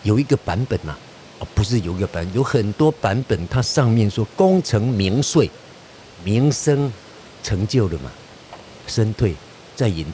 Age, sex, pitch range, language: 50-69, male, 110-155 Hz, Chinese